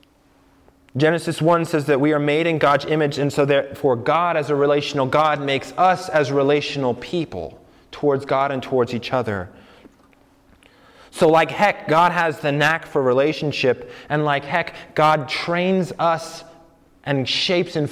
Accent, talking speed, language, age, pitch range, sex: American, 155 wpm, English, 20-39, 135-165 Hz, male